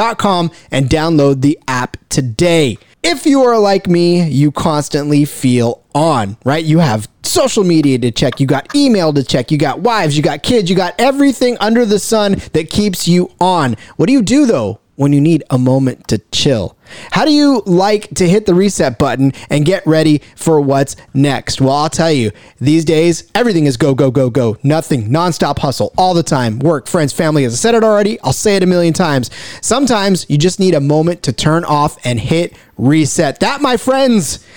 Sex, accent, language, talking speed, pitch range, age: male, American, English, 200 wpm, 140-195 Hz, 30-49